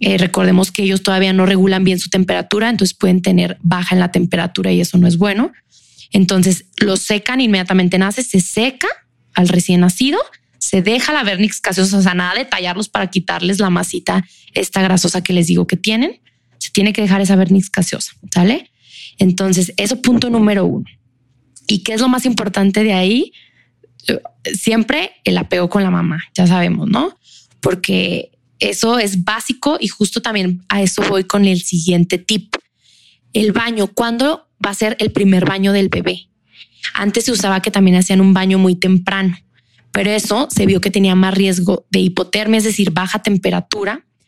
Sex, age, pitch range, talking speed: female, 20-39, 185-215 Hz, 180 wpm